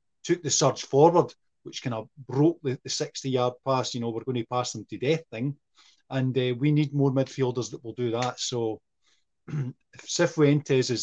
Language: English